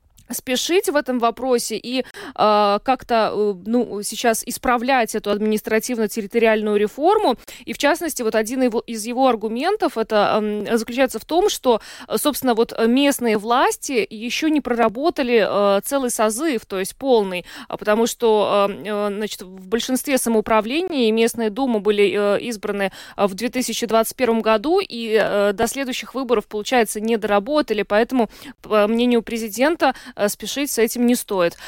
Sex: female